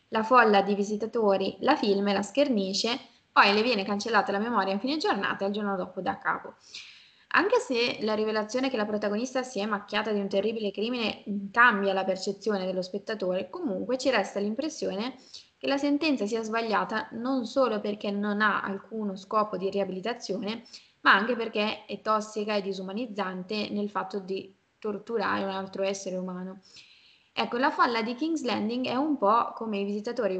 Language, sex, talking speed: Italian, female, 175 wpm